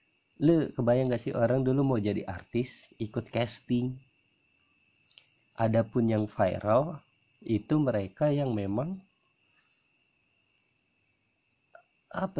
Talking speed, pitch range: 95 wpm, 120-155 Hz